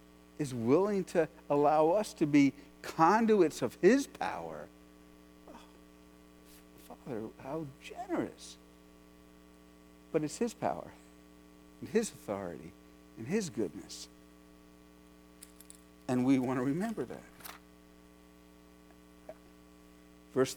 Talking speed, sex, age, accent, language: 90 wpm, male, 60-79, American, English